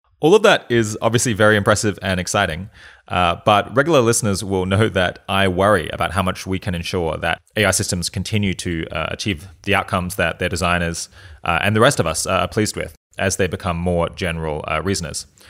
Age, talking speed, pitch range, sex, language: 20-39, 200 wpm, 85-100 Hz, male, English